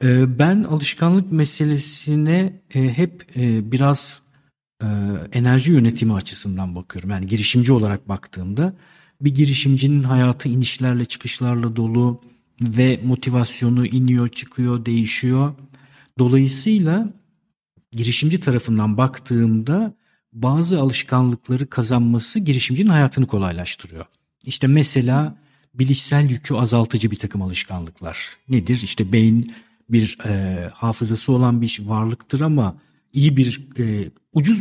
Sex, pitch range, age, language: male, 110-145 Hz, 50-69, Turkish